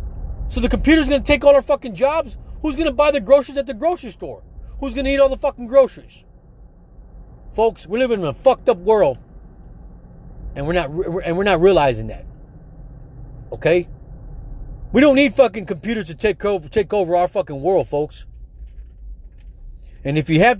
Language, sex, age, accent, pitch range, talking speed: English, male, 40-59, American, 150-235 Hz, 180 wpm